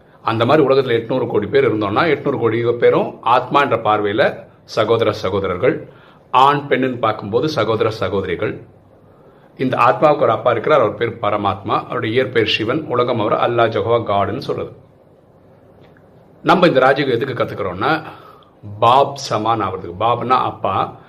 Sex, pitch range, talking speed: male, 115-155 Hz, 120 wpm